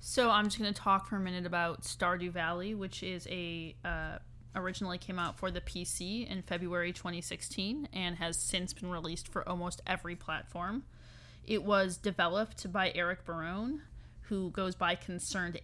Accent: American